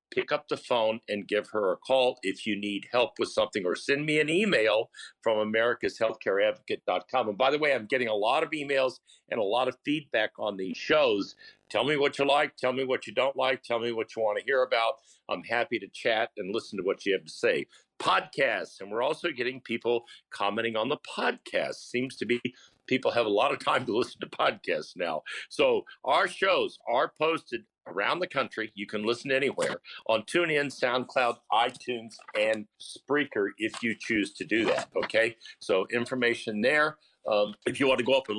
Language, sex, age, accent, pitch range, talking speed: English, male, 50-69, American, 110-155 Hz, 205 wpm